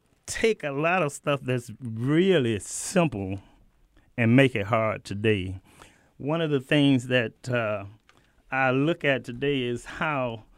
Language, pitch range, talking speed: English, 115-145 Hz, 140 wpm